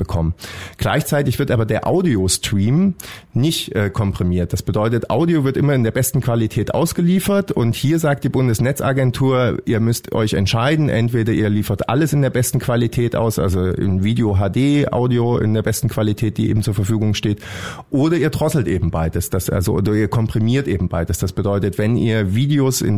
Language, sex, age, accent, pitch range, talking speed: German, male, 30-49, German, 105-125 Hz, 175 wpm